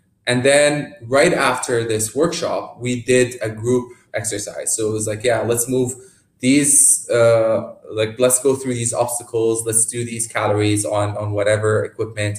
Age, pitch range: 20-39, 105-125 Hz